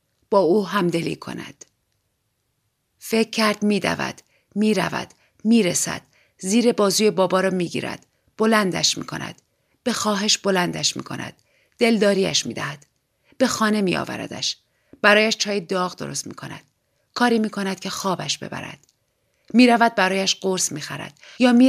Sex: female